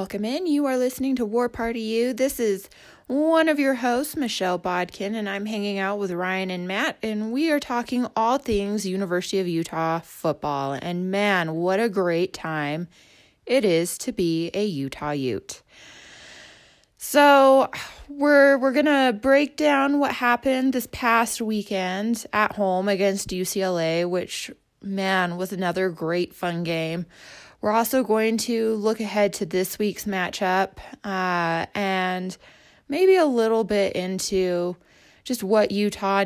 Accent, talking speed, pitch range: American, 150 wpm, 175-225 Hz